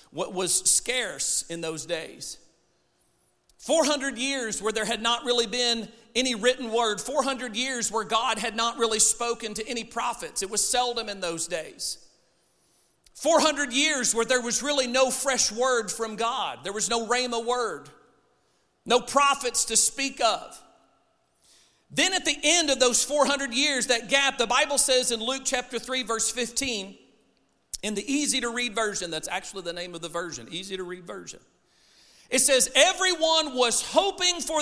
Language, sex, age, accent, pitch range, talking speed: English, male, 40-59, American, 225-275 Hz, 160 wpm